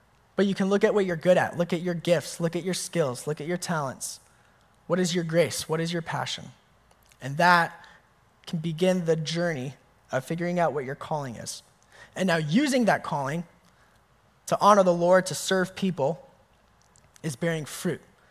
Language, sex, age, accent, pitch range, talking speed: English, male, 20-39, American, 165-210 Hz, 185 wpm